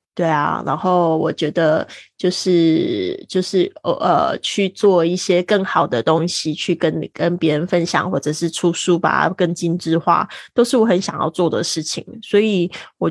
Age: 20-39